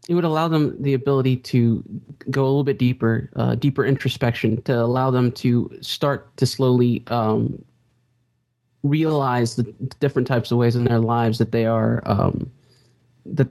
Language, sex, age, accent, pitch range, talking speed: English, male, 20-39, American, 120-140 Hz, 165 wpm